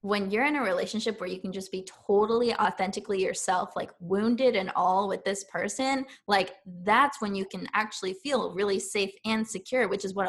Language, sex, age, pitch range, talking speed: English, female, 10-29, 190-220 Hz, 200 wpm